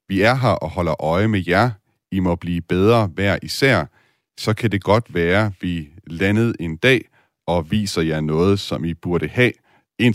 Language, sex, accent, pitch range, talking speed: Danish, male, native, 80-100 Hz, 195 wpm